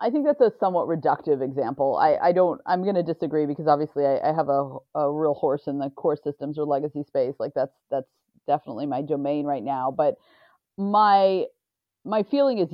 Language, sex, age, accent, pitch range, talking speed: English, female, 30-49, American, 150-200 Hz, 205 wpm